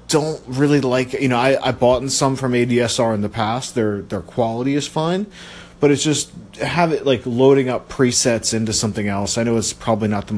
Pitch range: 100-125 Hz